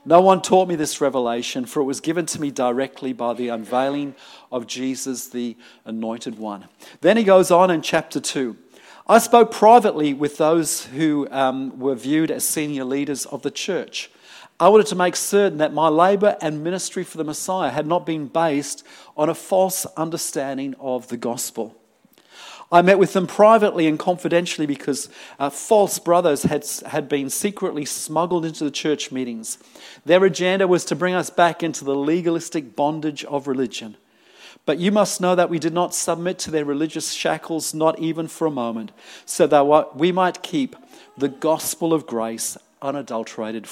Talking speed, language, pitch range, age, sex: 175 wpm, English, 135-175 Hz, 40-59, male